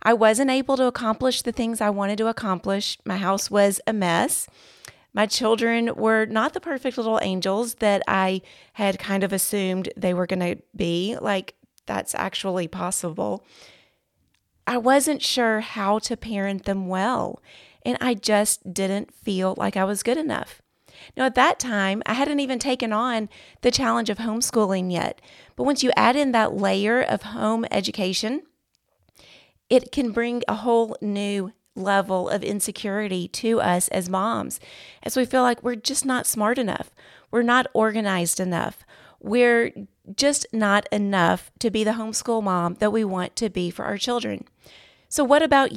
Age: 30-49